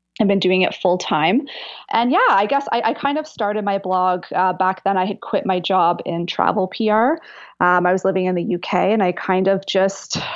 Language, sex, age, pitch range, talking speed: English, female, 20-39, 180-220 Hz, 230 wpm